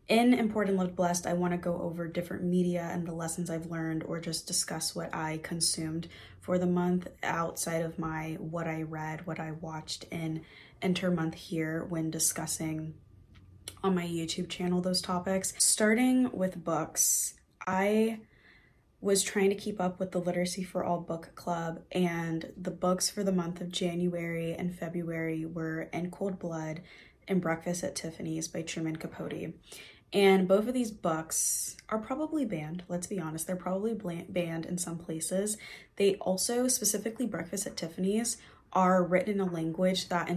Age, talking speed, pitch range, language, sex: 20-39, 165 wpm, 165-185 Hz, English, female